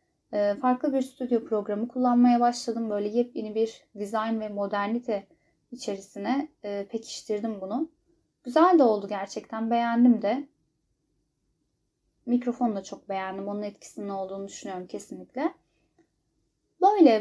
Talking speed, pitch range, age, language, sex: 110 wpm, 205-265 Hz, 10-29, Turkish, female